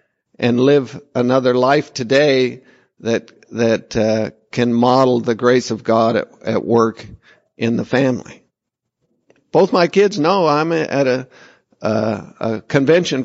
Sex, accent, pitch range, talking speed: male, American, 115-145 Hz, 145 wpm